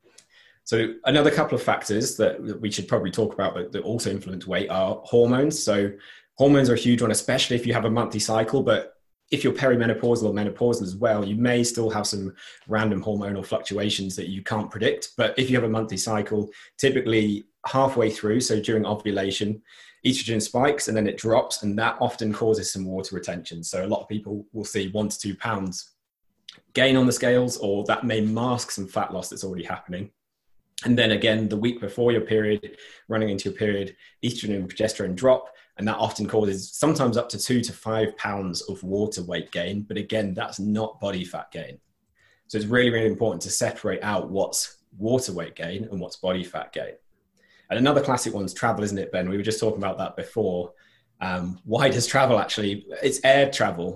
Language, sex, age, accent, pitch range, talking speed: English, male, 20-39, British, 100-120 Hz, 200 wpm